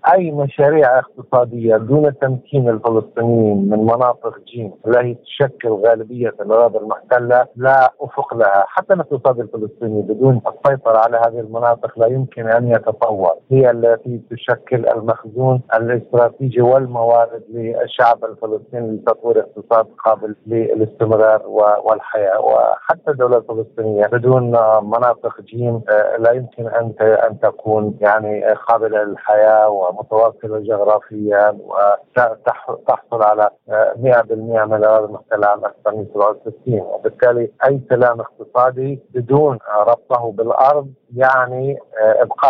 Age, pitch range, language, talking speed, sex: 50-69, 110-130 Hz, Arabic, 105 wpm, male